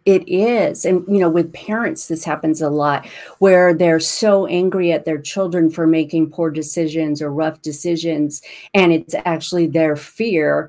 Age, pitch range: 40-59, 155-180 Hz